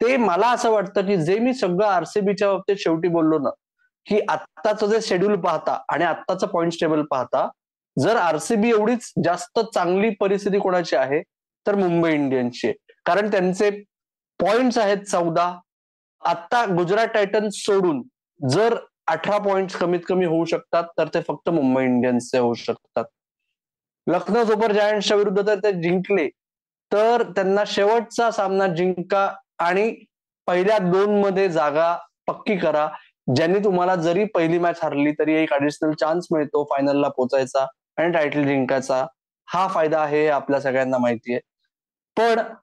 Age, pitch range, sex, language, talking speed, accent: 20-39, 160-215 Hz, male, Marathi, 140 wpm, native